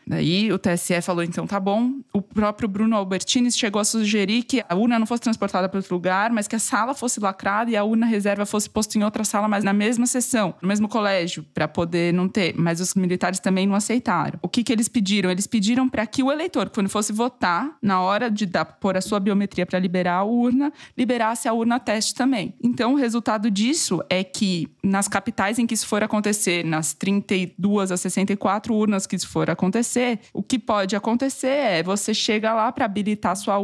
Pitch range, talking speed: 185-230 Hz, 215 wpm